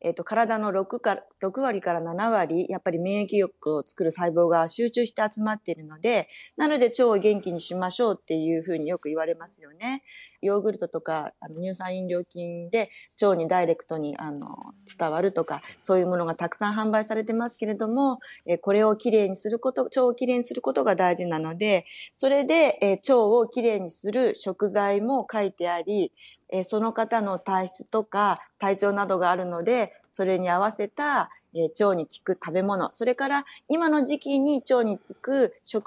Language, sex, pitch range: Japanese, female, 180-235 Hz